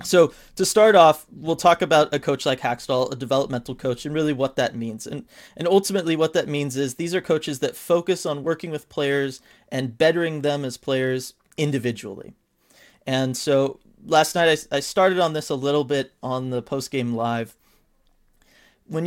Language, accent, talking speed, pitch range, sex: English, American, 185 wpm, 125-150 Hz, male